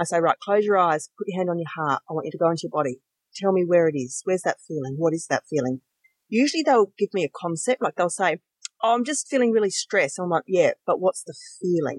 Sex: female